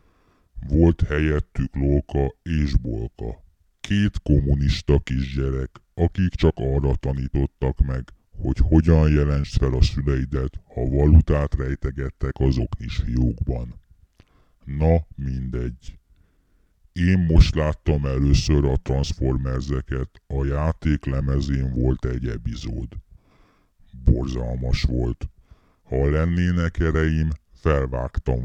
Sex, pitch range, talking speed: female, 65-80 Hz, 95 wpm